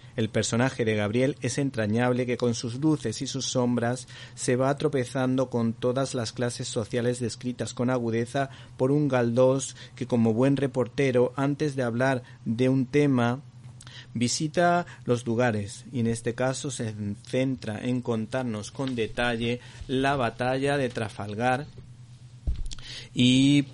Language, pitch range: Spanish, 115-130 Hz